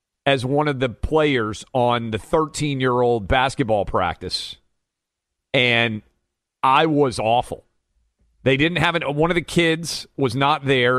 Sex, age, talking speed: male, 40-59, 135 wpm